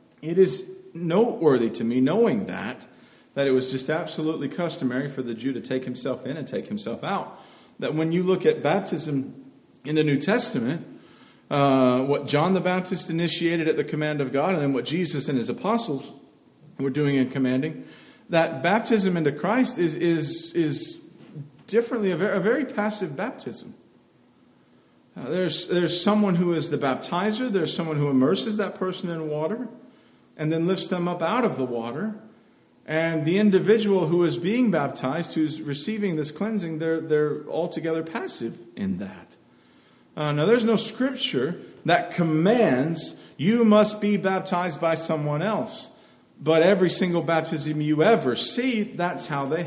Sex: male